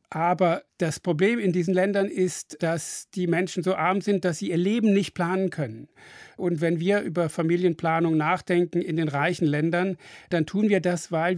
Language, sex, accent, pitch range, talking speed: German, male, German, 160-185 Hz, 185 wpm